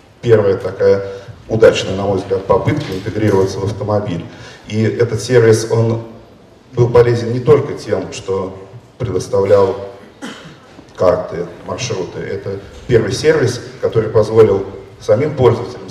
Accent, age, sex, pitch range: native, 40-59, male, 110-180 Hz